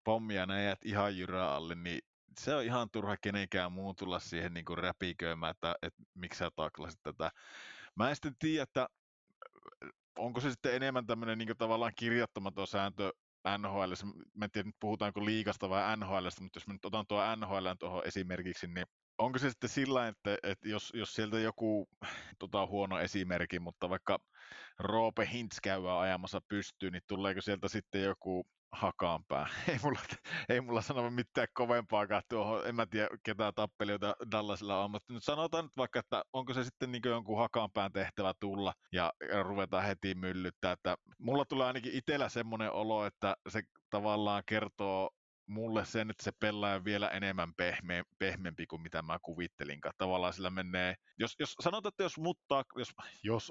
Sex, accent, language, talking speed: male, native, Finnish, 160 wpm